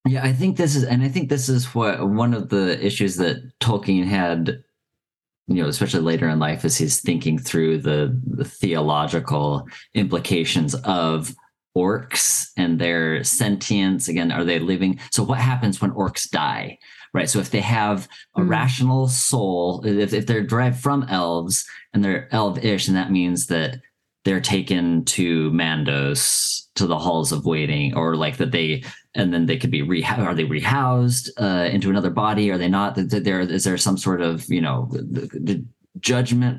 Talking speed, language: 175 wpm, English